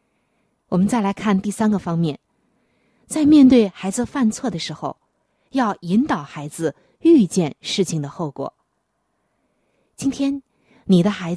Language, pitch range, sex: Chinese, 170-250 Hz, female